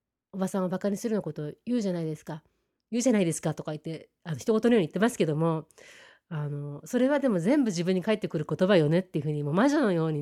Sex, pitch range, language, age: female, 175-245 Hz, Japanese, 30-49